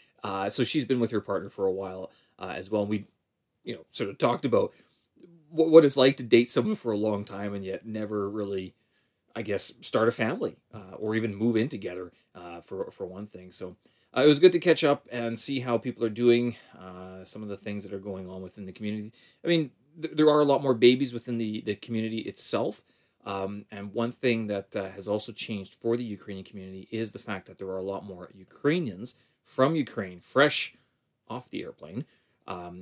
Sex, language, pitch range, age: male, English, 100-125 Hz, 30-49